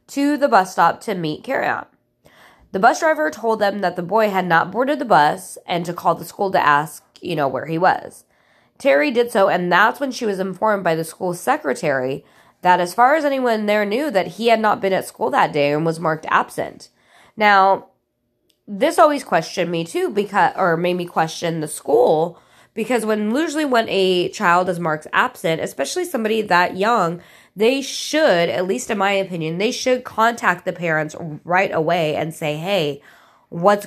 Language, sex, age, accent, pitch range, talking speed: English, female, 20-39, American, 170-225 Hz, 195 wpm